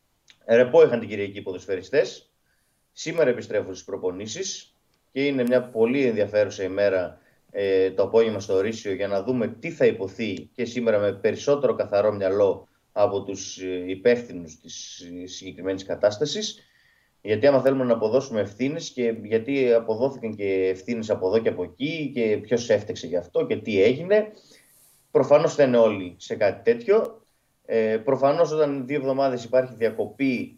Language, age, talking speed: Greek, 30-49, 145 wpm